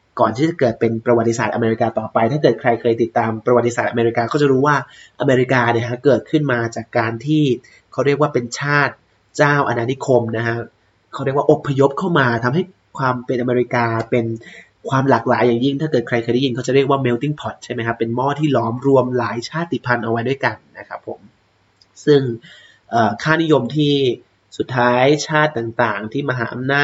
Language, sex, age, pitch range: Thai, male, 20-39, 115-145 Hz